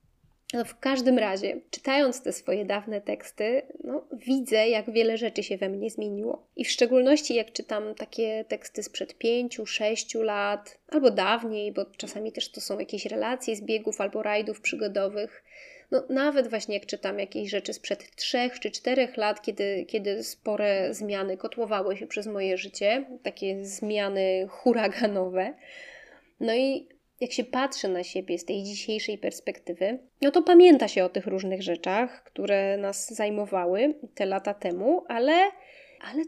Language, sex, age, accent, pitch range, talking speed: Polish, female, 20-39, native, 200-245 Hz, 150 wpm